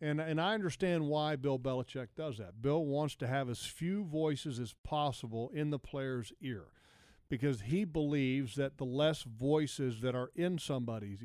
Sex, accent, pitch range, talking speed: male, American, 120-150 Hz, 175 wpm